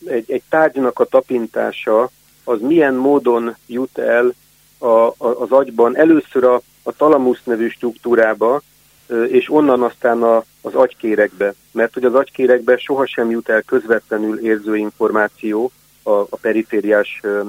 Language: Hungarian